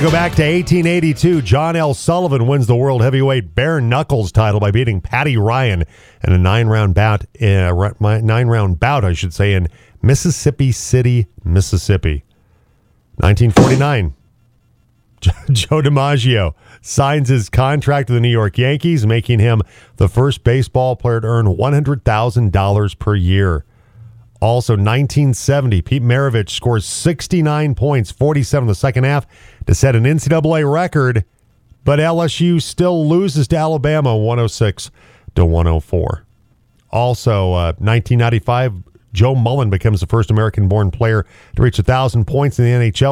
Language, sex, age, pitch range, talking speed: English, male, 40-59, 105-135 Hz, 135 wpm